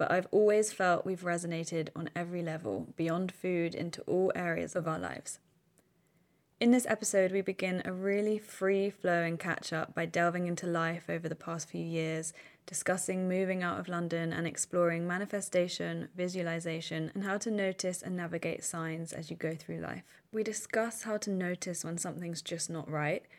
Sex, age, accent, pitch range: female, 20-39, British, 160-185 Hz